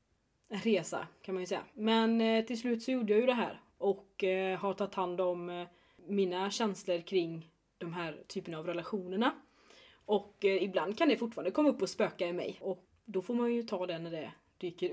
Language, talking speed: English, 195 wpm